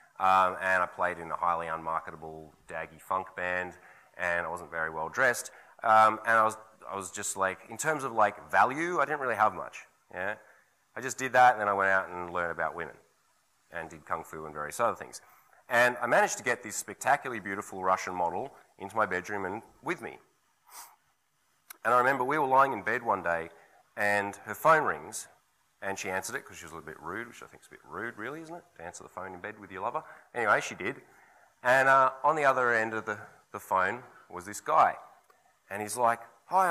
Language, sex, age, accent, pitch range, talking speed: English, male, 30-49, Australian, 90-130 Hz, 225 wpm